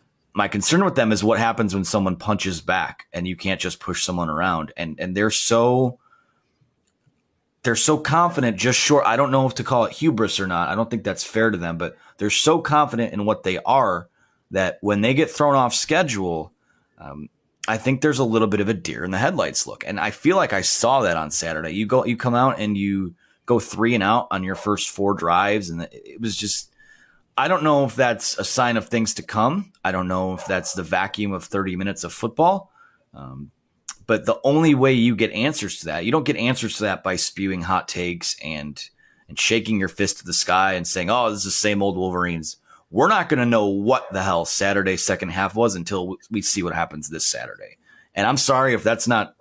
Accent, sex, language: American, male, English